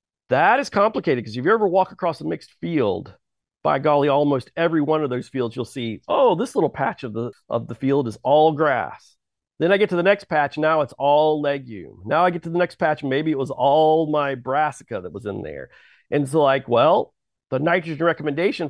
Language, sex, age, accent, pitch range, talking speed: English, male, 40-59, American, 120-155 Hz, 220 wpm